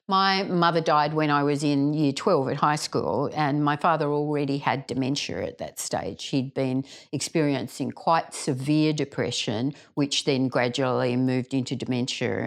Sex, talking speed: female, 160 wpm